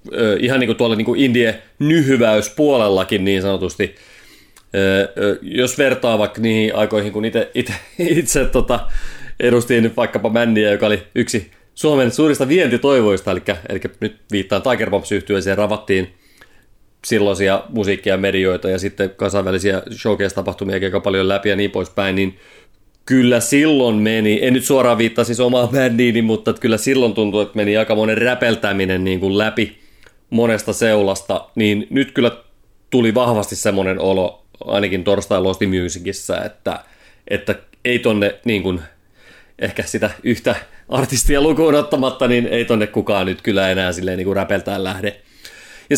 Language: Finnish